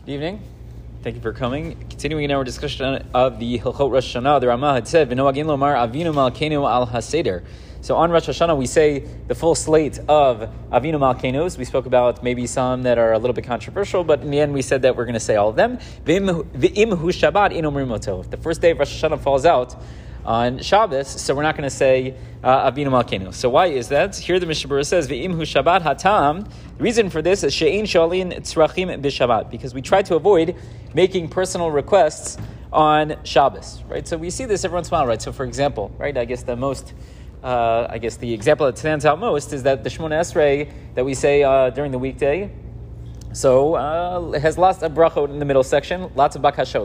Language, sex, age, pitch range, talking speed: English, male, 30-49, 125-160 Hz, 195 wpm